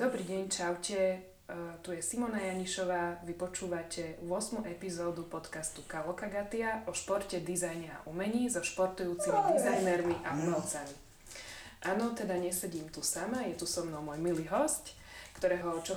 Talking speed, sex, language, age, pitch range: 150 wpm, female, Slovak, 20-39, 165-190 Hz